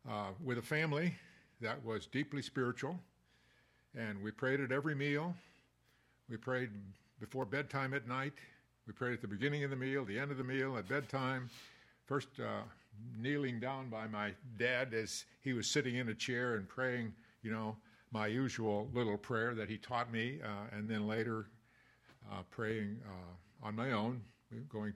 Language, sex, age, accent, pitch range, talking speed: English, male, 60-79, American, 110-130 Hz, 175 wpm